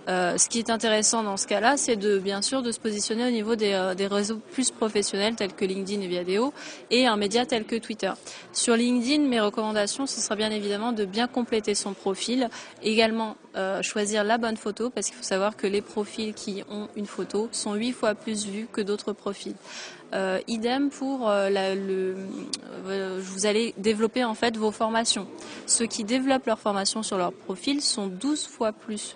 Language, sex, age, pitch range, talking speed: French, female, 20-39, 205-240 Hz, 200 wpm